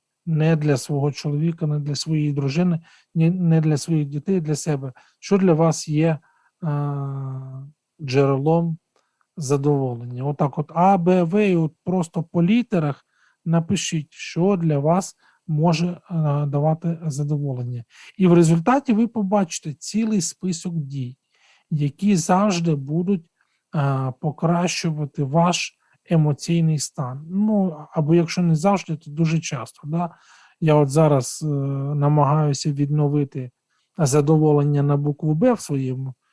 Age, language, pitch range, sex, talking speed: 40-59, Ukrainian, 145-170 Hz, male, 125 wpm